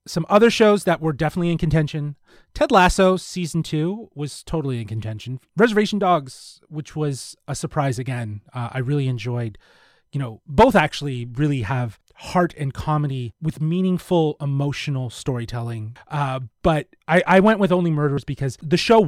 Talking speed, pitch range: 160 wpm, 125-160 Hz